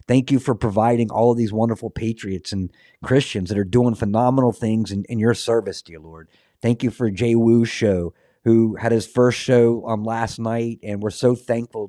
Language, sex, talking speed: English, male, 200 wpm